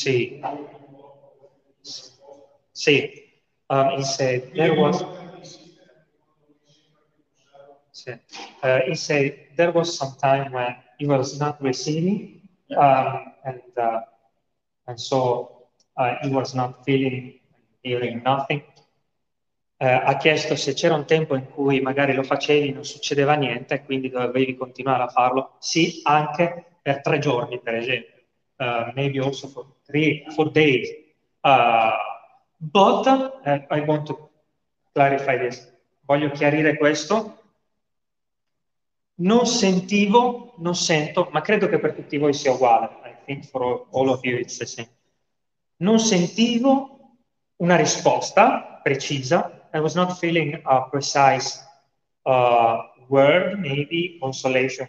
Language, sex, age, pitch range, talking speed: Italian, male, 30-49, 130-170 Hz, 125 wpm